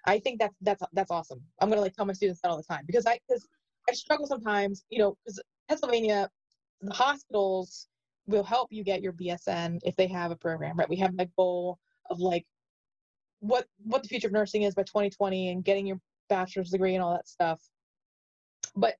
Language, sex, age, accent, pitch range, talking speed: English, female, 20-39, American, 185-230 Hz, 210 wpm